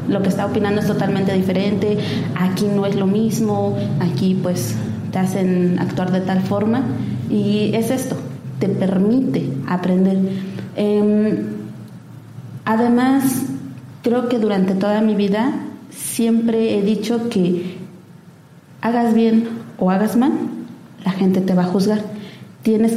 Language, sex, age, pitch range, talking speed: Spanish, female, 30-49, 180-210 Hz, 130 wpm